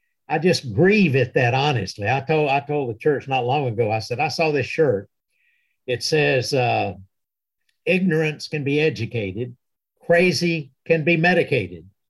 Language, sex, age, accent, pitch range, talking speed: English, male, 60-79, American, 130-180 Hz, 160 wpm